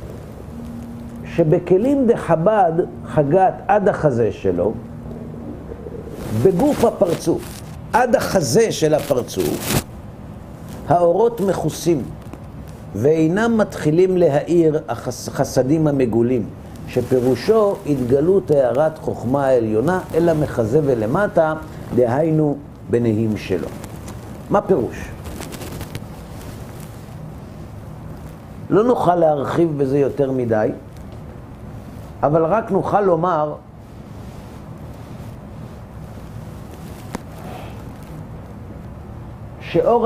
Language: Hebrew